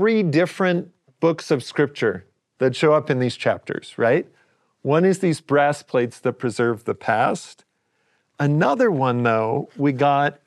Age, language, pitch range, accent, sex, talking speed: 40-59, English, 130-155 Hz, American, male, 150 wpm